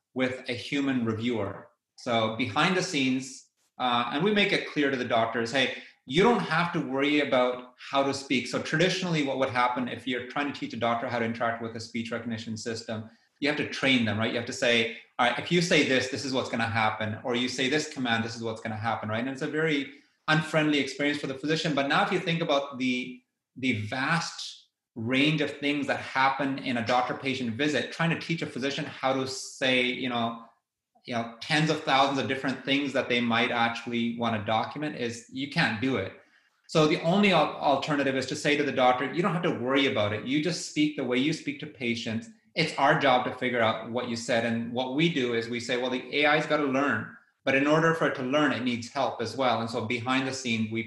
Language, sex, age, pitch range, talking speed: English, male, 30-49, 115-145 Hz, 240 wpm